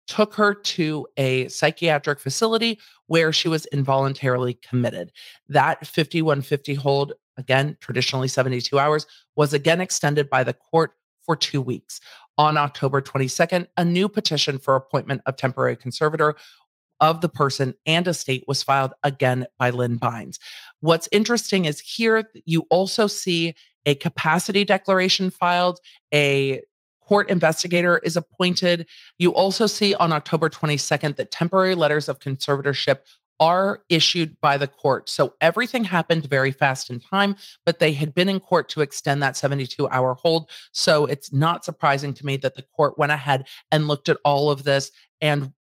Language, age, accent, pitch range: English, 40-59, American, 135-165 Hz